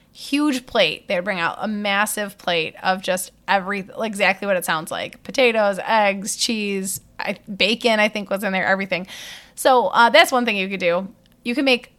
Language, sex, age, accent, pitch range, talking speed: English, female, 20-39, American, 185-240 Hz, 190 wpm